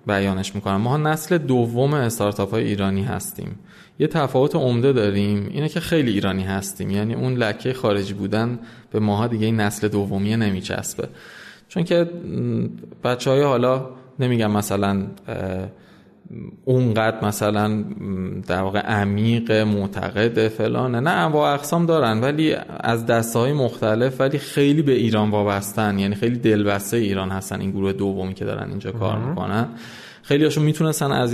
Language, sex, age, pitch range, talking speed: Persian, male, 20-39, 105-130 Hz, 140 wpm